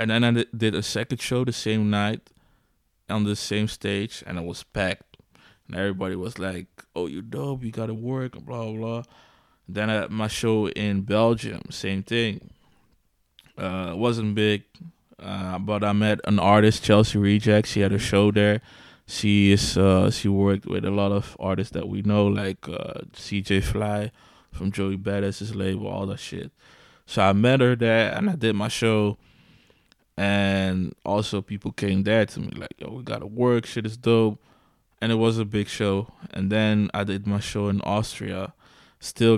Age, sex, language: 20-39, male, English